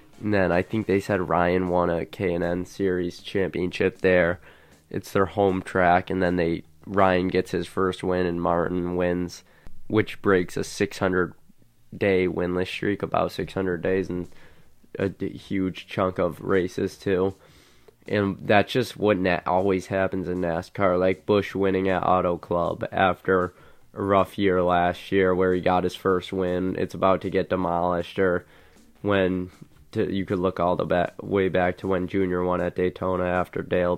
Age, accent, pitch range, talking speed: 20-39, American, 90-100 Hz, 180 wpm